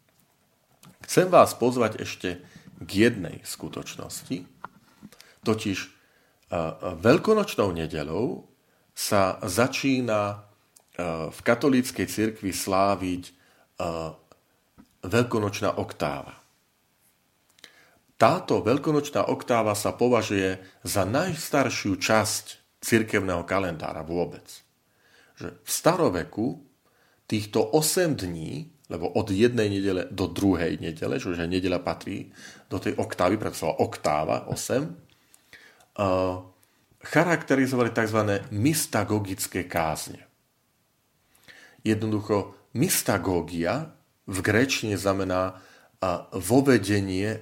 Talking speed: 80 wpm